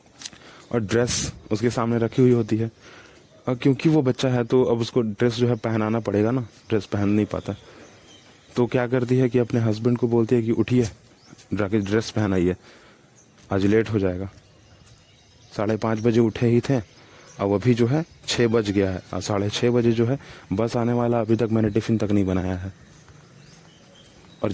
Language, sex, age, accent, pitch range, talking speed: Hindi, male, 30-49, native, 105-120 Hz, 185 wpm